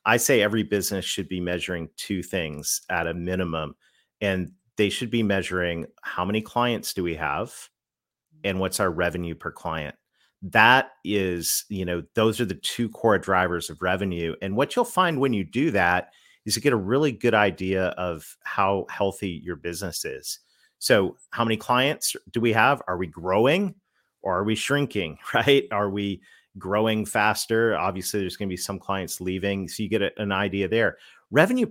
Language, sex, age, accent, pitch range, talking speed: English, male, 40-59, American, 90-110 Hz, 180 wpm